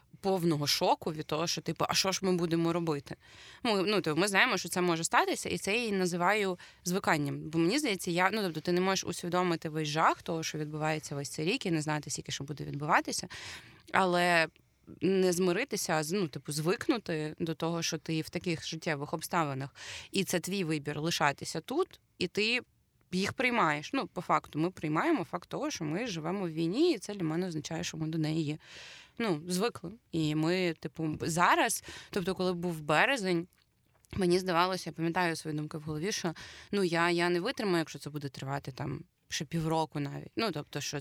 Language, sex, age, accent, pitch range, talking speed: Ukrainian, female, 20-39, native, 155-185 Hz, 195 wpm